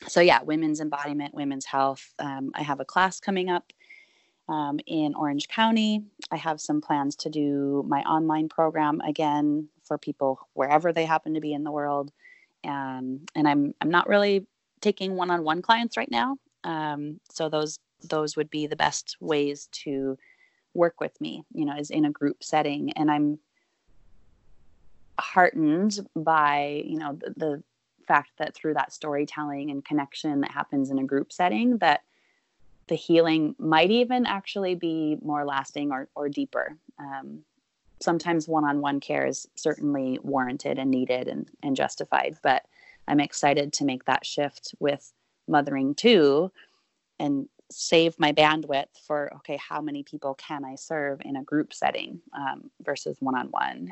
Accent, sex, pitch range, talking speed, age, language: American, female, 140-165 Hz, 160 wpm, 30-49, English